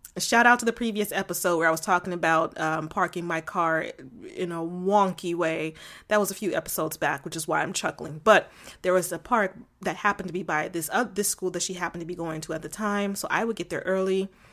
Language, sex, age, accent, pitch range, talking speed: English, female, 20-39, American, 170-210 Hz, 250 wpm